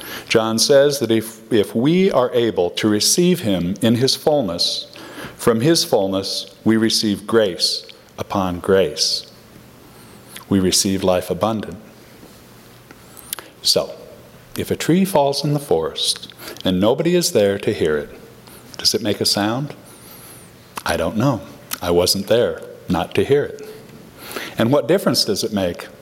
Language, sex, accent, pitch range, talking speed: English, male, American, 105-175 Hz, 145 wpm